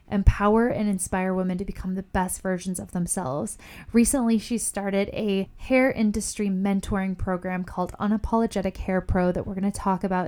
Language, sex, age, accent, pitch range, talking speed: English, female, 10-29, American, 185-210 Hz, 170 wpm